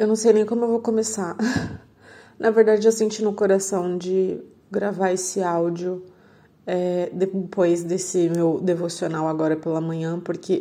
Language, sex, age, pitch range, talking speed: Portuguese, female, 20-39, 175-205 Hz, 145 wpm